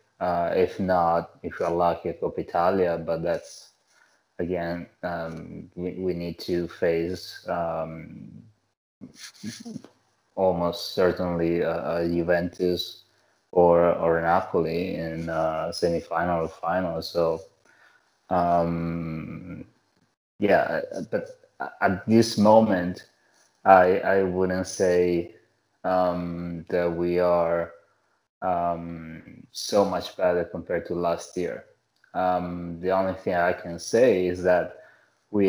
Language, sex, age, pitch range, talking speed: English, male, 20-39, 85-90 Hz, 110 wpm